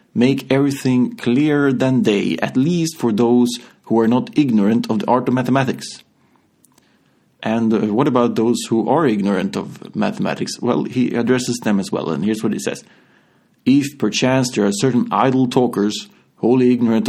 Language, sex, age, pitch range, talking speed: English, male, 30-49, 110-130 Hz, 165 wpm